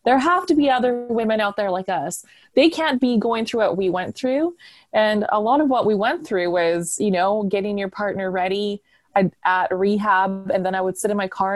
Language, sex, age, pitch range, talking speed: English, female, 20-39, 195-260 Hz, 235 wpm